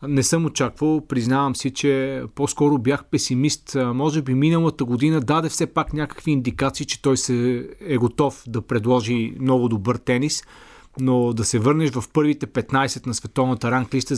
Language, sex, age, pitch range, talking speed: Bulgarian, male, 40-59, 130-150 Hz, 160 wpm